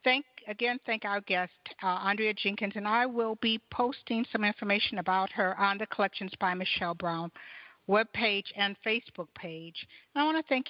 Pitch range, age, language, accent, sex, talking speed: 170-230 Hz, 60-79, English, American, female, 170 wpm